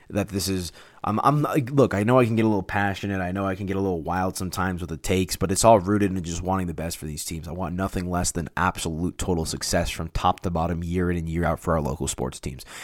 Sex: male